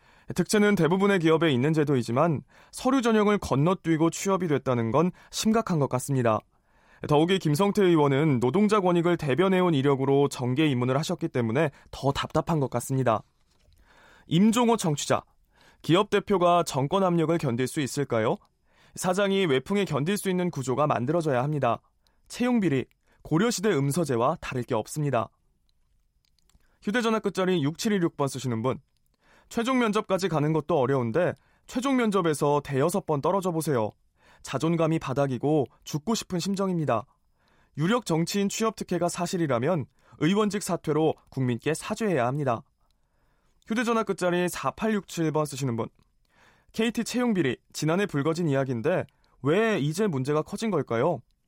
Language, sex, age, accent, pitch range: Korean, male, 20-39, native, 135-195 Hz